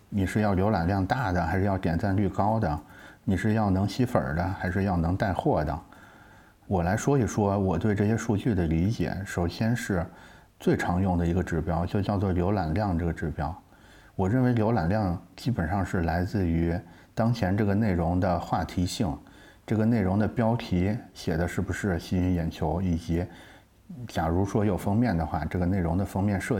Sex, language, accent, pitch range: male, Chinese, native, 85-105 Hz